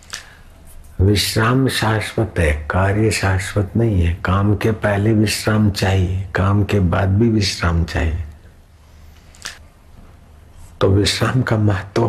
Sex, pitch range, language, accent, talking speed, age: male, 85-100 Hz, Hindi, native, 110 wpm, 60-79